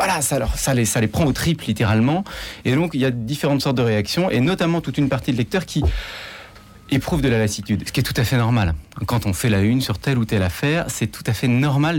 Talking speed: 270 wpm